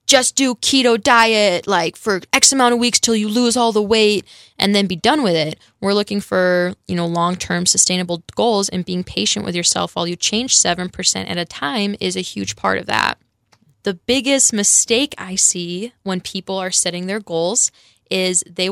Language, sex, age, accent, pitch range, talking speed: English, female, 10-29, American, 185-240 Hz, 195 wpm